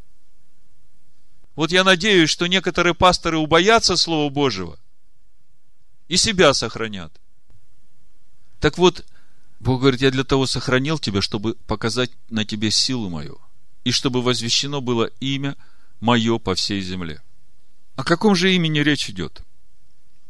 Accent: native